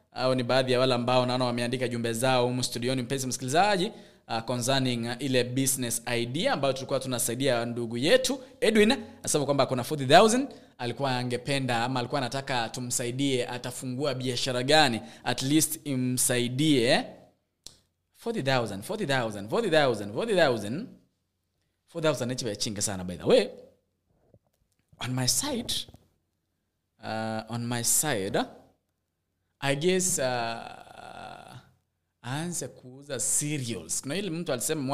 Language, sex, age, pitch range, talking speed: English, male, 20-39, 115-150 Hz, 125 wpm